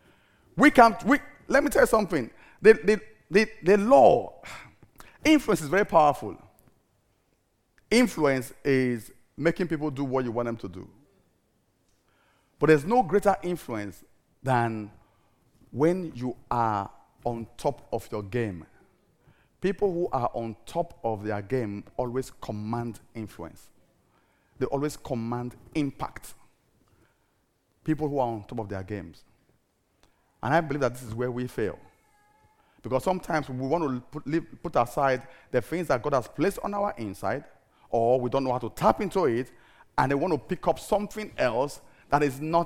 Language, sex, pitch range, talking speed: English, male, 115-175 Hz, 155 wpm